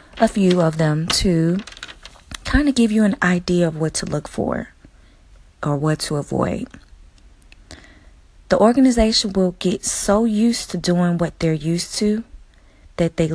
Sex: female